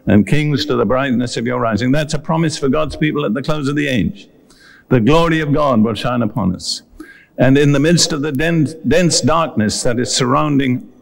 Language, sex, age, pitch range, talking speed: English, male, 60-79, 125-150 Hz, 210 wpm